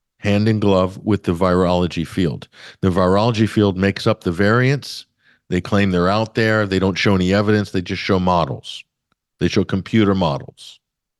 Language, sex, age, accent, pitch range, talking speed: English, male, 50-69, American, 95-120 Hz, 170 wpm